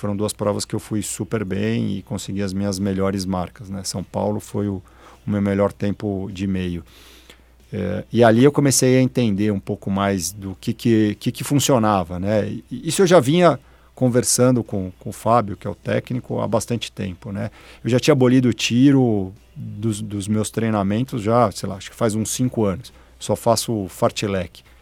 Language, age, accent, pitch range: Portuguese, 50-69, Brazilian, 100-130 Hz